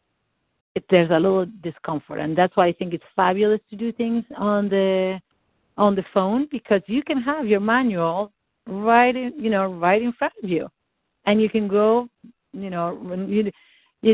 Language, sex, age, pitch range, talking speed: English, female, 50-69, 170-215 Hz, 170 wpm